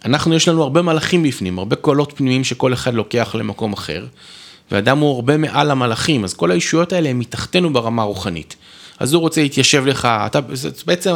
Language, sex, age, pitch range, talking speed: Hebrew, male, 30-49, 110-155 Hz, 185 wpm